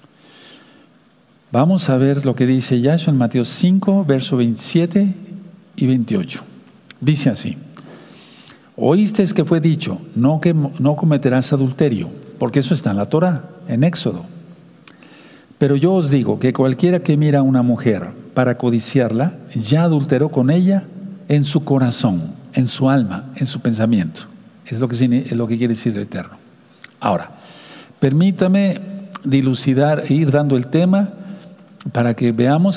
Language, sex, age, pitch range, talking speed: Spanish, male, 50-69, 130-180 Hz, 145 wpm